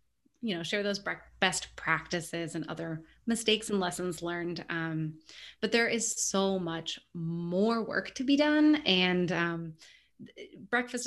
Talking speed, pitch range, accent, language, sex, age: 140 wpm, 170-215 Hz, American, English, female, 20-39